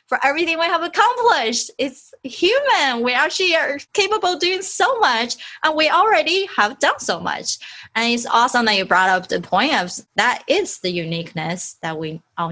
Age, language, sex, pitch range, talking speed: 20-39, English, female, 180-255 Hz, 185 wpm